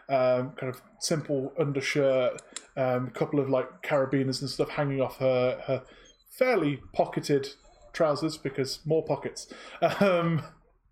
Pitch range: 135-160 Hz